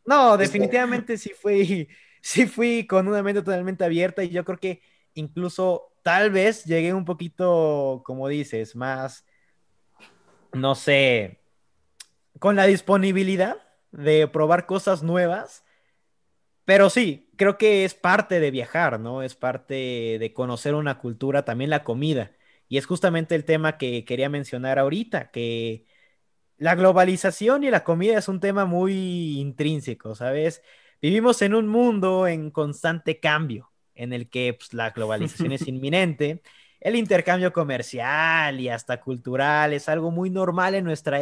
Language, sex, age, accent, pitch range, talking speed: Spanish, male, 20-39, Mexican, 135-190 Hz, 145 wpm